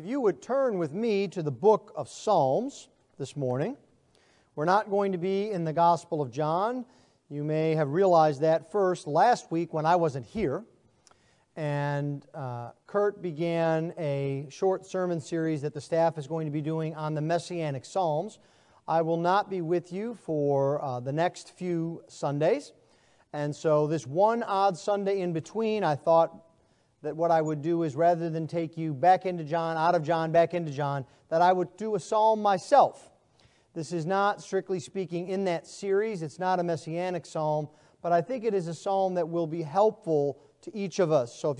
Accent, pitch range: American, 155-195 Hz